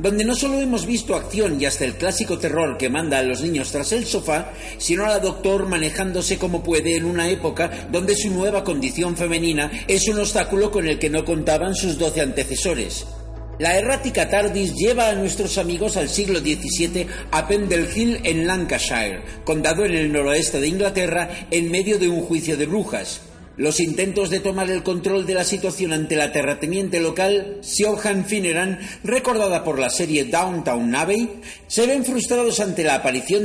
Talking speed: 180 wpm